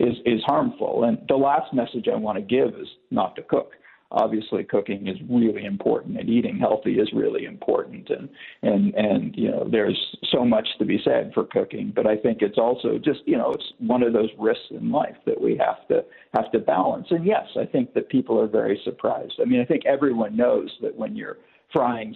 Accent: American